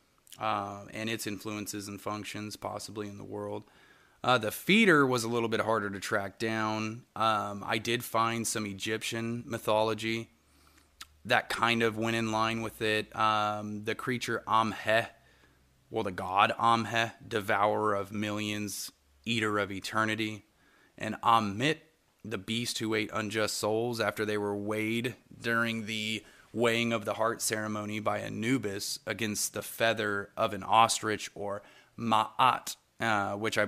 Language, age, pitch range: English, 30-49, 105-115 Hz